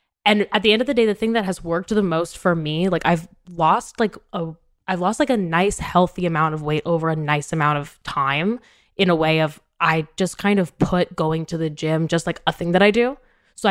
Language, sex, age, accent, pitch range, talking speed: English, female, 10-29, American, 165-205 Hz, 250 wpm